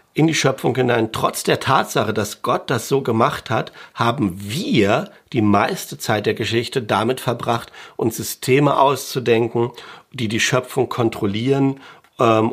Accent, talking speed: German, 145 wpm